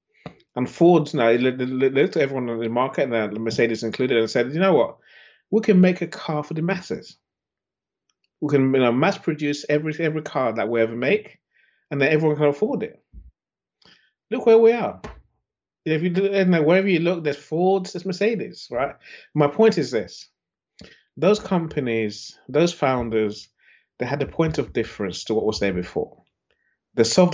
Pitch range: 120-175 Hz